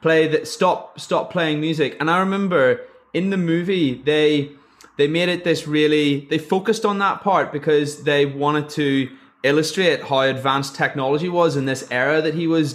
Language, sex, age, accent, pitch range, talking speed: English, male, 20-39, British, 140-180 Hz, 180 wpm